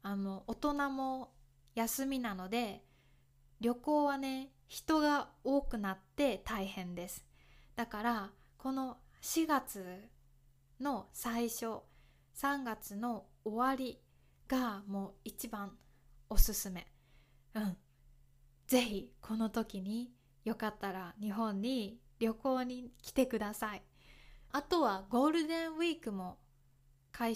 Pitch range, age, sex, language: 185-255 Hz, 20-39, female, Japanese